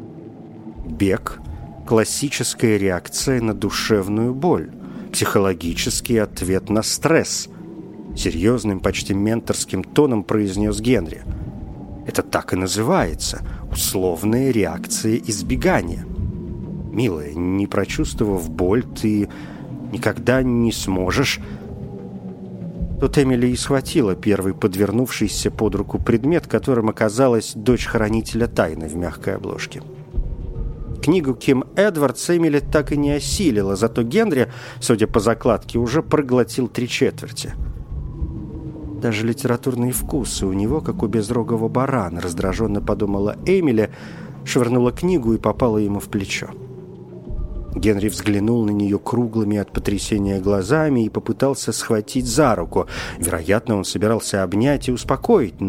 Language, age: Russian, 40-59